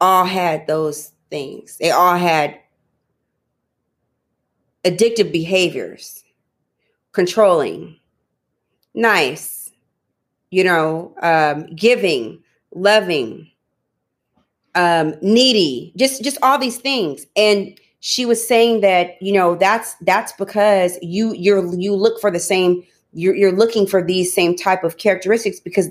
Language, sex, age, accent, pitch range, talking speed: English, female, 30-49, American, 180-220 Hz, 115 wpm